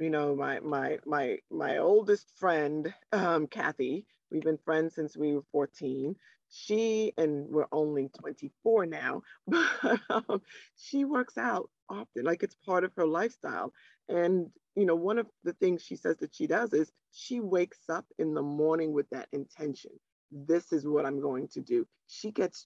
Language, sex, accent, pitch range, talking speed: English, female, American, 150-230 Hz, 175 wpm